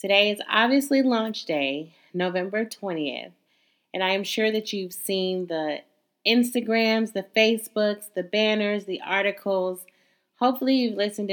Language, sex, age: English, female, 30-49